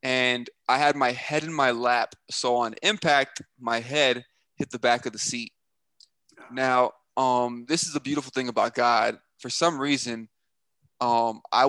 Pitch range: 120-150 Hz